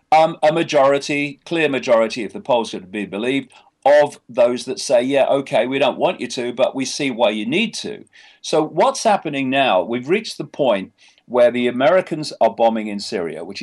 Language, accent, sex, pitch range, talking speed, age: English, British, male, 115-165 Hz, 200 wpm, 40-59